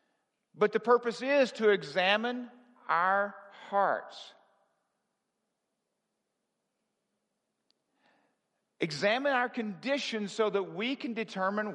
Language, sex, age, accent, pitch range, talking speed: English, male, 50-69, American, 185-235 Hz, 80 wpm